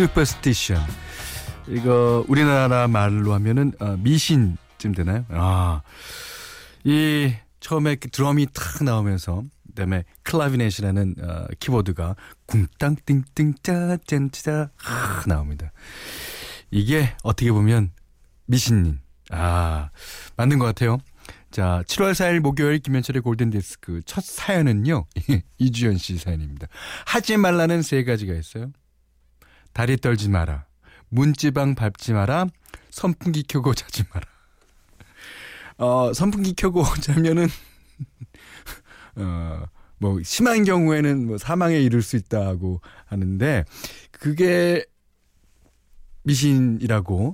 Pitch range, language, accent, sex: 90-145 Hz, Korean, native, male